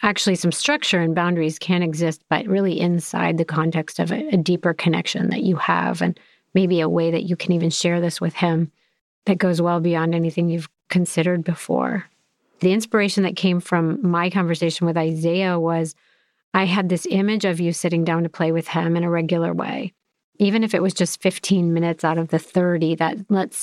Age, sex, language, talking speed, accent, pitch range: 30-49, female, English, 200 wpm, American, 165-195 Hz